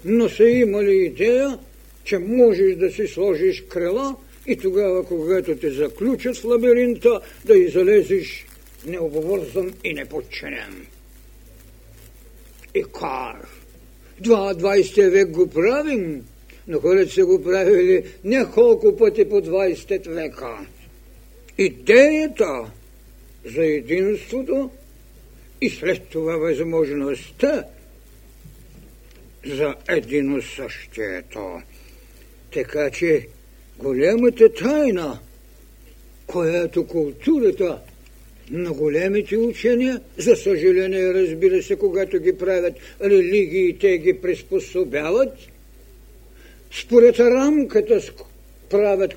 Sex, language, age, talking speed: male, Bulgarian, 60-79, 85 wpm